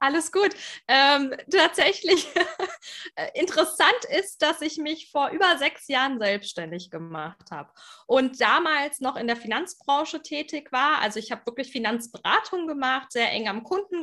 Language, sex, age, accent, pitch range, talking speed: German, female, 20-39, German, 235-345 Hz, 145 wpm